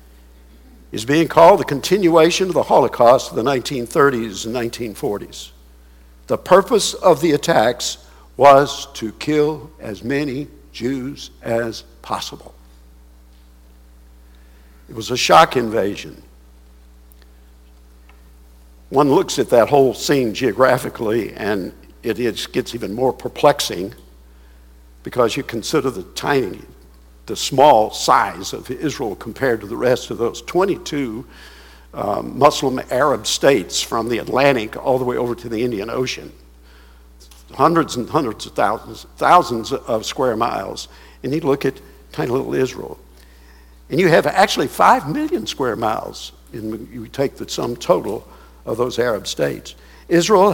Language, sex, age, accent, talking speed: English, male, 60-79, American, 130 wpm